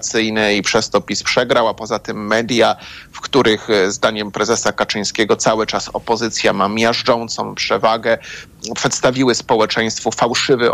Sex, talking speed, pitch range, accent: male, 130 wpm, 105-130 Hz, native